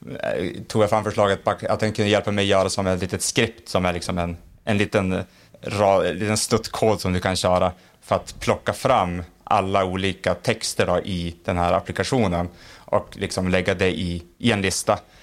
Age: 30-49